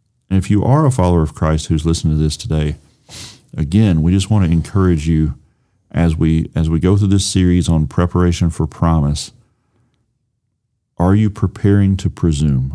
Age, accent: 40-59, American